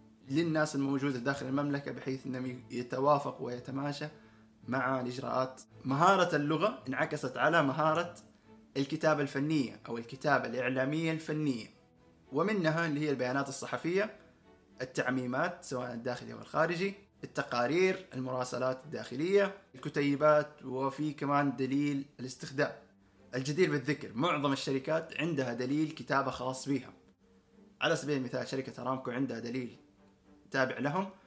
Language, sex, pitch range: Arabic, male, 125-155 Hz